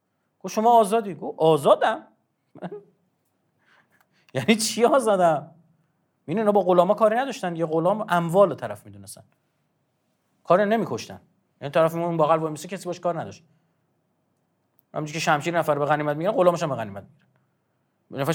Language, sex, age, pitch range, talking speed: Persian, male, 30-49, 120-170 Hz, 130 wpm